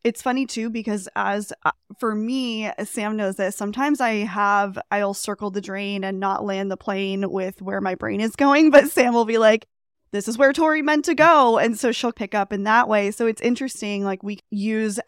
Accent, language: American, English